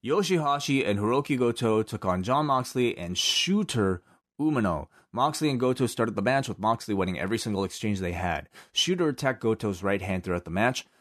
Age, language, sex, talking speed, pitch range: 30-49, English, male, 180 wpm, 95-125 Hz